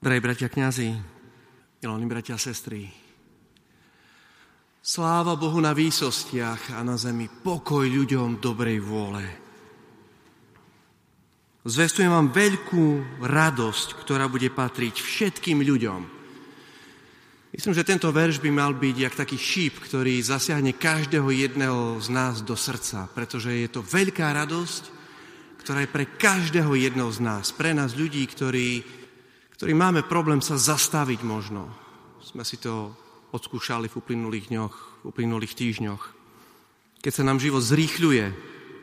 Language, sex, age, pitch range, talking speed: Slovak, male, 30-49, 120-150 Hz, 125 wpm